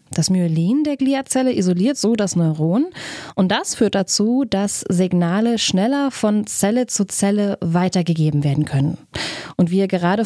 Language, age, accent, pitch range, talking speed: German, 20-39, German, 175-220 Hz, 150 wpm